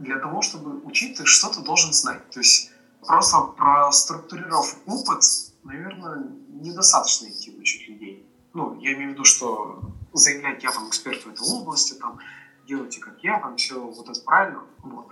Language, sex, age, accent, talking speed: Russian, male, 20-39, native, 155 wpm